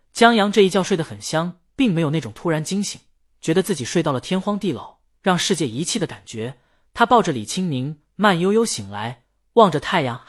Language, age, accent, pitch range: Chinese, 20-39, native, 130-195 Hz